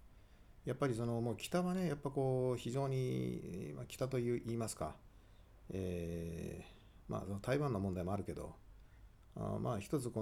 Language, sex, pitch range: Japanese, male, 95-120 Hz